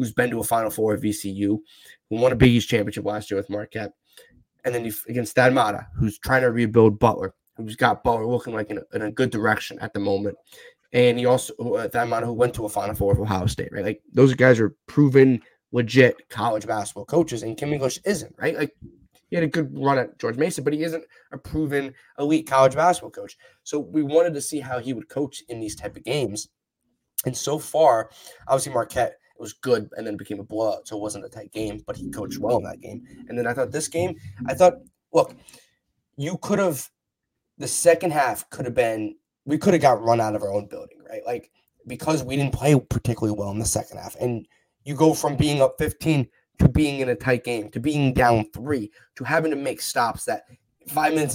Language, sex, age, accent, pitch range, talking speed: English, male, 20-39, American, 110-150 Hz, 225 wpm